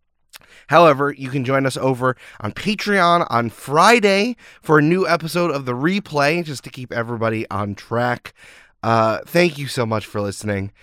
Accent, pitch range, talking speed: American, 105-145 Hz, 165 wpm